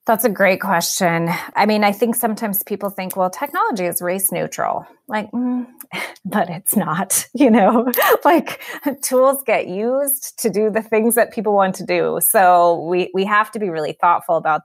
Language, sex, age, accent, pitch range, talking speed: English, female, 30-49, American, 170-215 Hz, 185 wpm